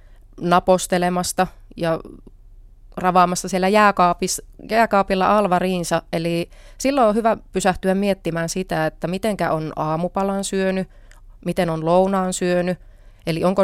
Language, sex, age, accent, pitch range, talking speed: Finnish, female, 30-49, native, 145-180 Hz, 105 wpm